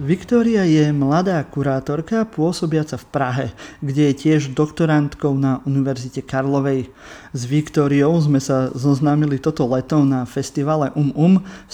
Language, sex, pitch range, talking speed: Slovak, male, 135-160 Hz, 135 wpm